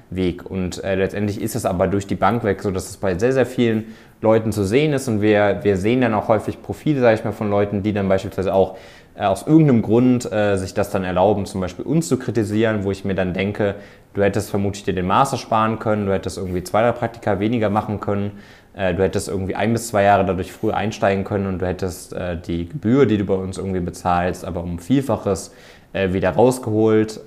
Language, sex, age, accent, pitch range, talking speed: German, male, 20-39, German, 95-110 Hz, 235 wpm